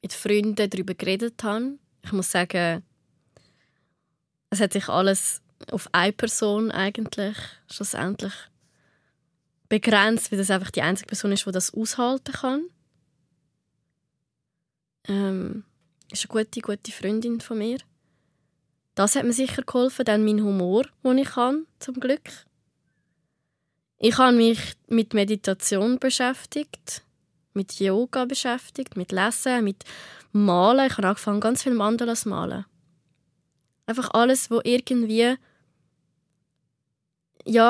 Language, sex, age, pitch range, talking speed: German, female, 20-39, 185-240 Hz, 125 wpm